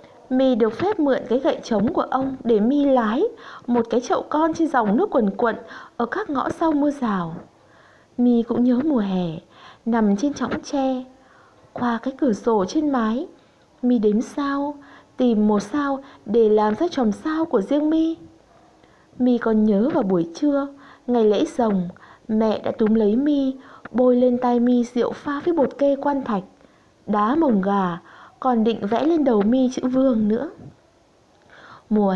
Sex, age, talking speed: female, 20-39, 175 wpm